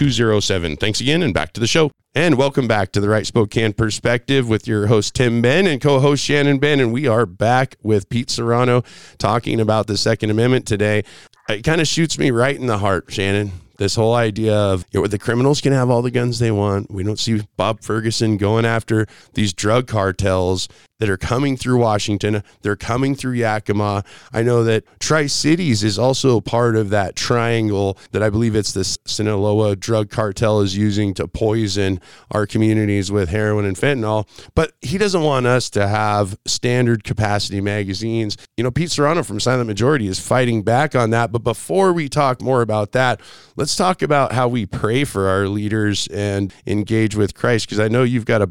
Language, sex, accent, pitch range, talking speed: English, male, American, 105-125 Hz, 190 wpm